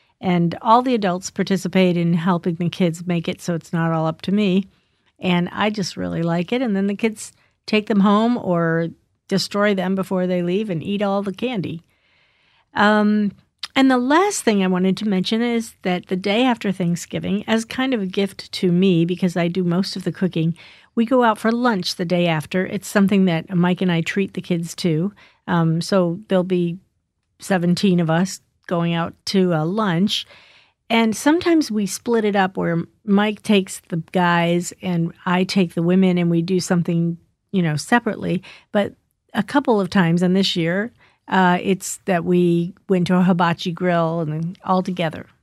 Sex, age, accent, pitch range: female, 50-69, American, 175-205 Hz